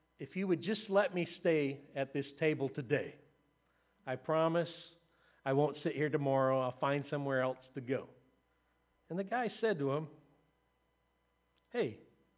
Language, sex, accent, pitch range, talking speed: English, male, American, 145-205 Hz, 150 wpm